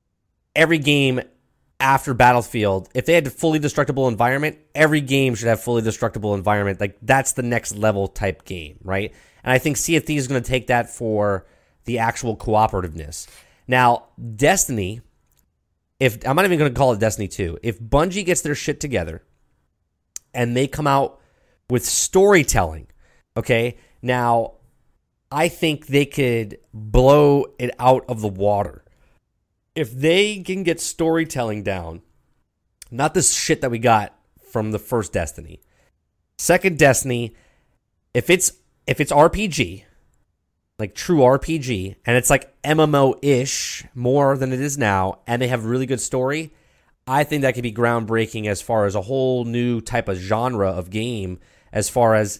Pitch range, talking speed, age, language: 100-140 Hz, 155 wpm, 30-49, English